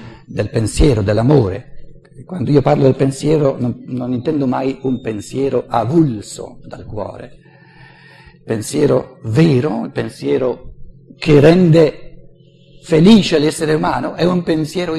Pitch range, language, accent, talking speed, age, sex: 135-175 Hz, Italian, native, 120 wpm, 60-79, male